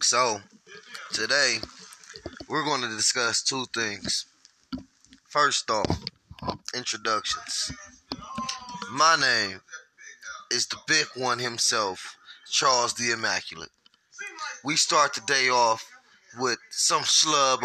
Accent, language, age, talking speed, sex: American, English, 20-39, 100 wpm, male